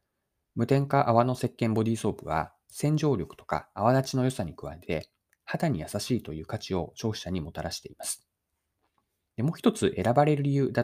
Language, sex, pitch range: Japanese, male, 85-135 Hz